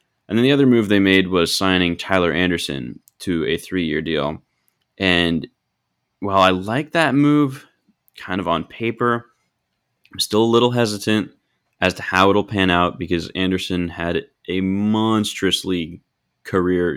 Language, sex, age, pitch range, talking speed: English, male, 20-39, 85-105 Hz, 150 wpm